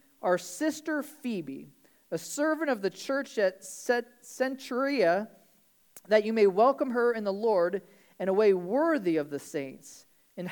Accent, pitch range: American, 195-260 Hz